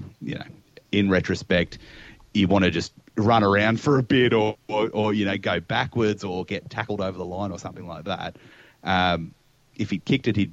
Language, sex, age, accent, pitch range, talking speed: English, male, 30-49, Australian, 90-115 Hz, 205 wpm